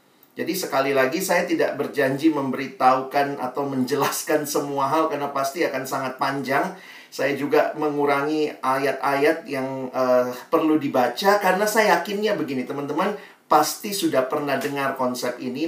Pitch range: 130-170 Hz